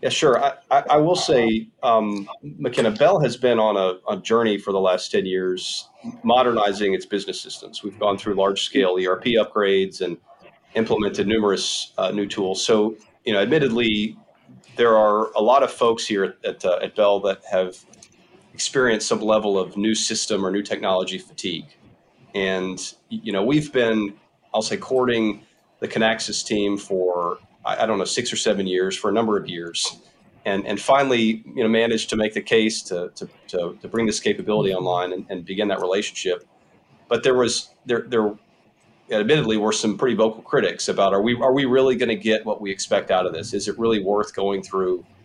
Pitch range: 95-115 Hz